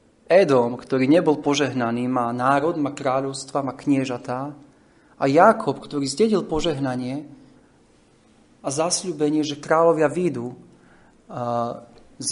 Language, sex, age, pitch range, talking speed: Slovak, male, 40-59, 115-145 Hz, 105 wpm